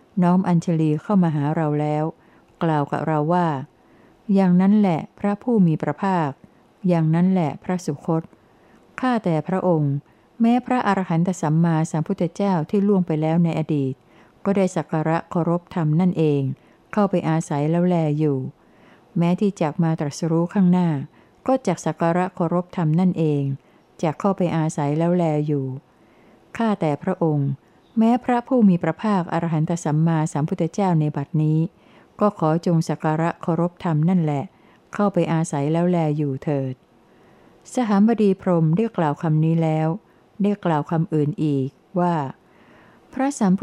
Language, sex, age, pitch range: Thai, female, 60-79, 155-185 Hz